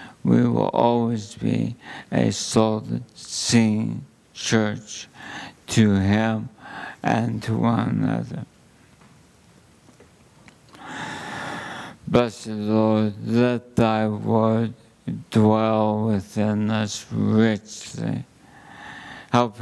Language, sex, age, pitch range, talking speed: English, male, 50-69, 110-120 Hz, 70 wpm